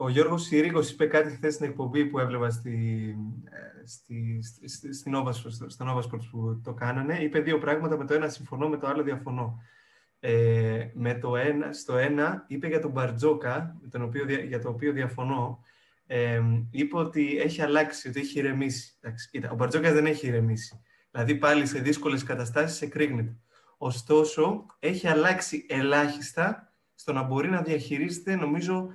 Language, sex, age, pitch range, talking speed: Greek, male, 20-39, 125-155 Hz, 155 wpm